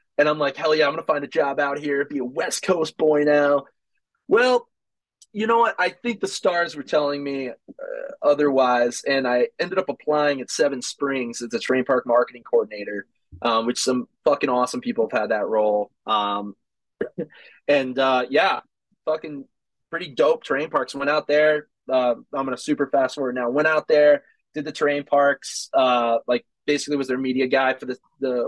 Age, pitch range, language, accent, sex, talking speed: 20-39, 125-150 Hz, English, American, male, 195 wpm